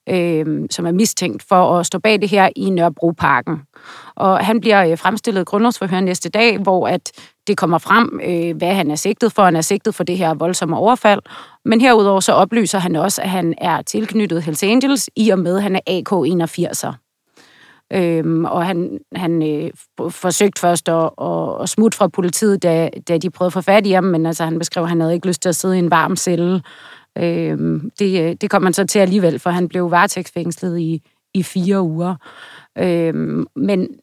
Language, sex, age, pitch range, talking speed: Danish, female, 30-49, 170-200 Hz, 205 wpm